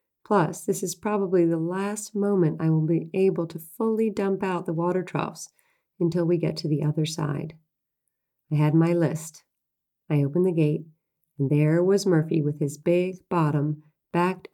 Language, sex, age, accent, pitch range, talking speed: English, female, 40-59, American, 160-190 Hz, 175 wpm